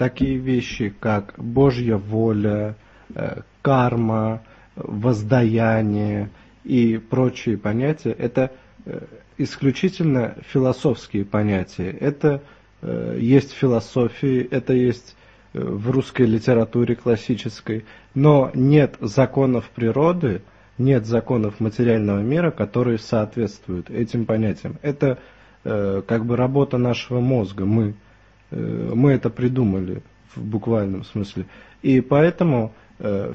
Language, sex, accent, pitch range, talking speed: Russian, male, native, 105-130 Hz, 95 wpm